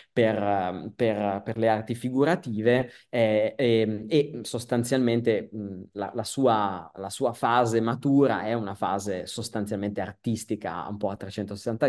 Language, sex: Italian, male